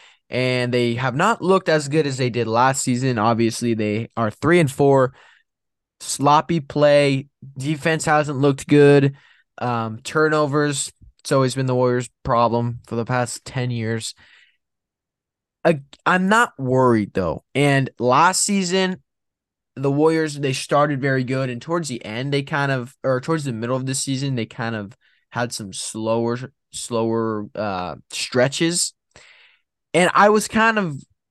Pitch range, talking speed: 115-155 Hz, 150 wpm